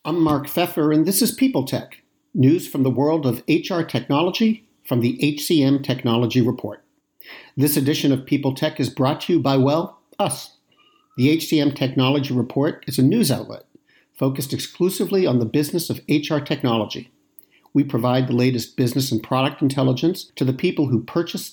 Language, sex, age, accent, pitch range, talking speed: English, male, 50-69, American, 125-160 Hz, 165 wpm